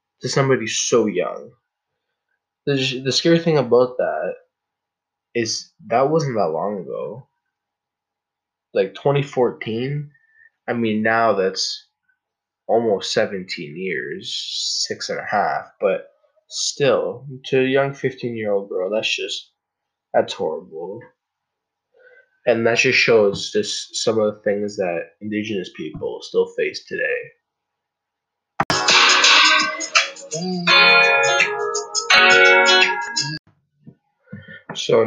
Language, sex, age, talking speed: English, male, 20-39, 95 wpm